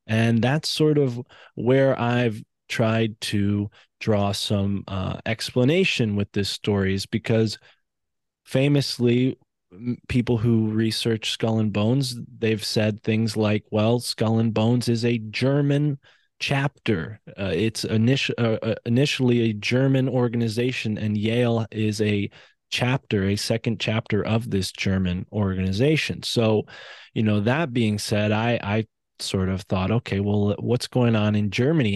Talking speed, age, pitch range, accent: 135 wpm, 20-39, 100-120 Hz, American